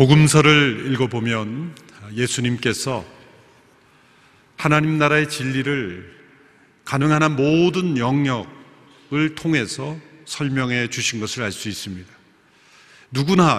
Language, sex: Korean, male